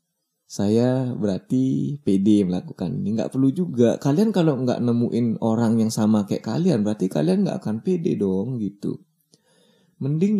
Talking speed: 145 wpm